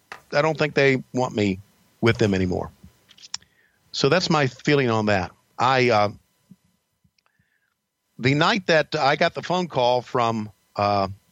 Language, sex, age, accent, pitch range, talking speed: English, male, 50-69, American, 115-155 Hz, 145 wpm